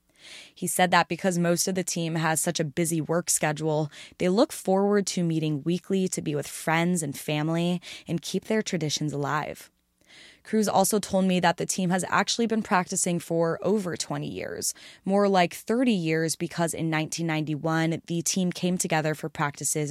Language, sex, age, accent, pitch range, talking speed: English, female, 20-39, American, 155-180 Hz, 180 wpm